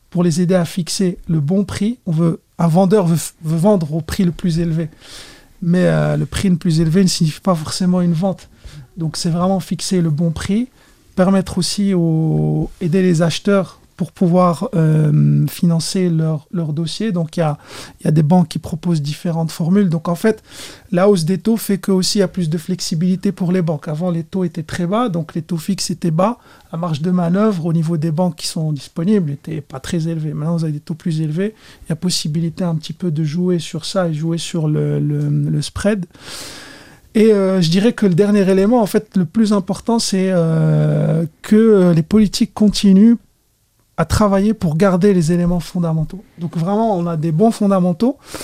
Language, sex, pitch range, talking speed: French, male, 165-195 Hz, 210 wpm